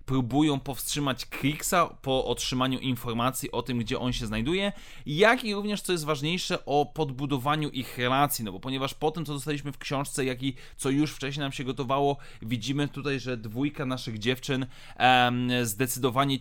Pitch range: 125-150 Hz